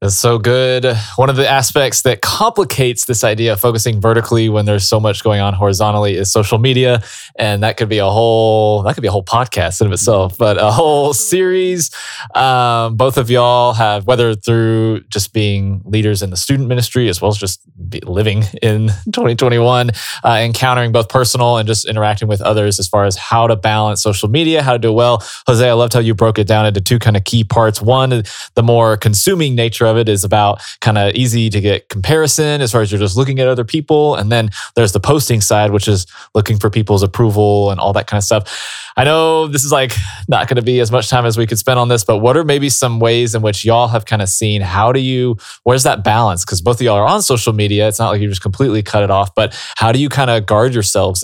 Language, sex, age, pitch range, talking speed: English, male, 20-39, 105-125 Hz, 240 wpm